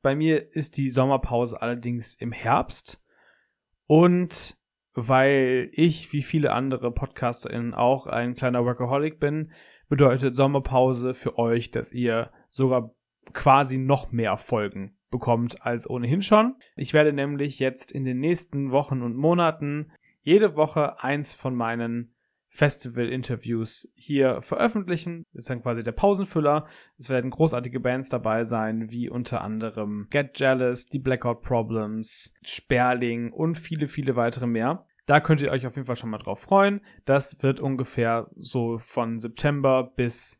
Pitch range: 120-145 Hz